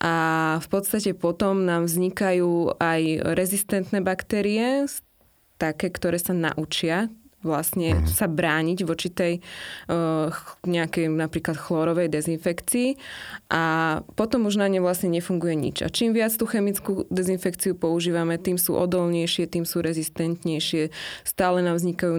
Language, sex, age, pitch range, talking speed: Slovak, female, 20-39, 160-180 Hz, 125 wpm